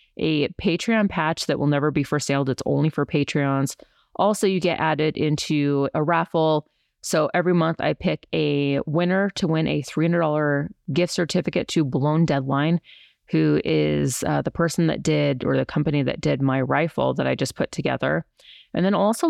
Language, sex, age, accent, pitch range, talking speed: English, female, 30-49, American, 140-170 Hz, 180 wpm